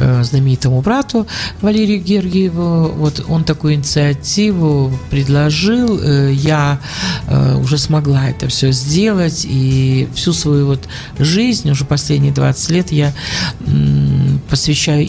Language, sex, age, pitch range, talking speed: Russian, male, 50-69, 130-165 Hz, 100 wpm